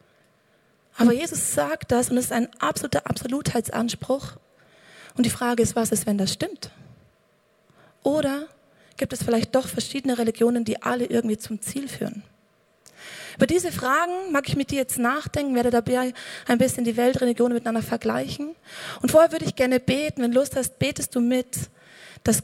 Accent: German